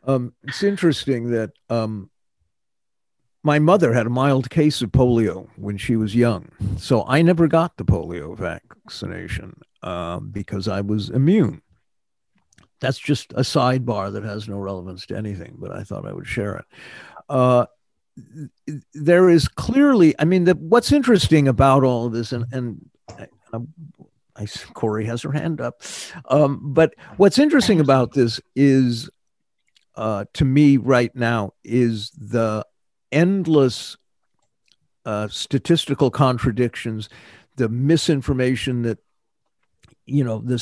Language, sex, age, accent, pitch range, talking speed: English, male, 50-69, American, 110-145 Hz, 135 wpm